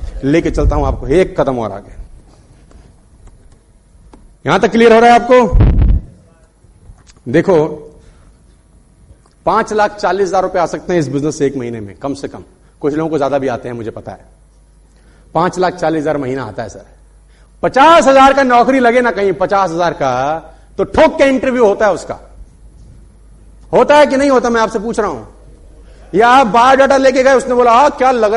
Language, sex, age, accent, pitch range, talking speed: Hindi, male, 40-59, native, 150-240 Hz, 180 wpm